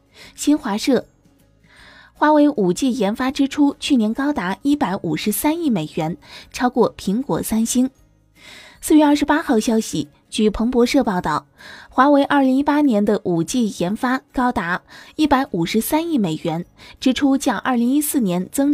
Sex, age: female, 20-39